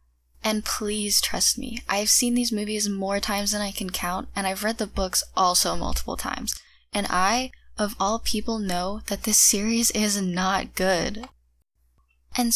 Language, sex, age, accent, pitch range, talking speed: English, female, 10-29, American, 185-225 Hz, 165 wpm